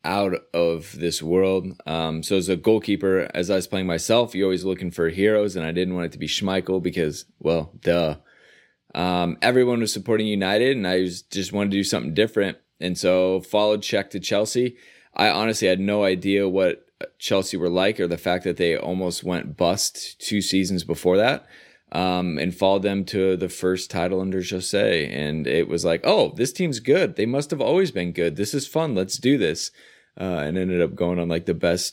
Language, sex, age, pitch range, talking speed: English, male, 20-39, 90-105 Hz, 205 wpm